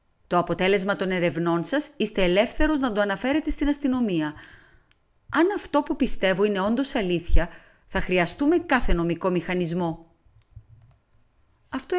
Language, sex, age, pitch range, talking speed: Greek, female, 30-49, 170-265 Hz, 125 wpm